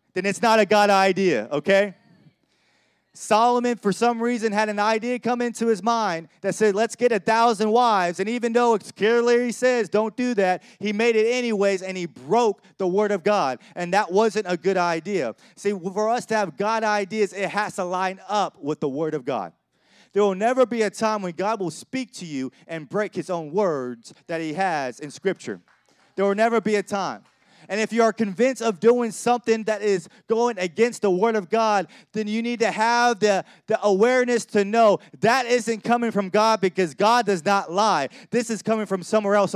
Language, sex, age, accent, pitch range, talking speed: English, male, 30-49, American, 180-220 Hz, 210 wpm